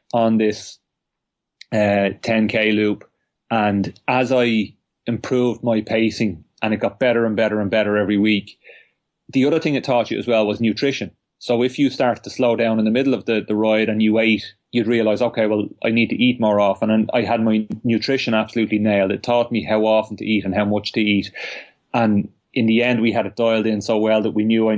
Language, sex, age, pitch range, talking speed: English, male, 30-49, 105-115 Hz, 225 wpm